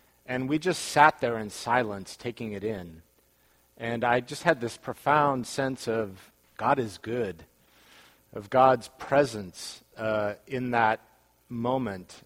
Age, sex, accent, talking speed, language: 40-59, male, American, 135 wpm, English